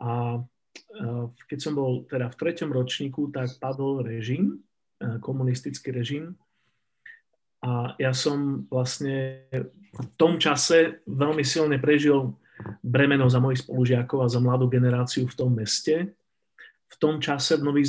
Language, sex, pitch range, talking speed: Slovak, male, 125-145 Hz, 130 wpm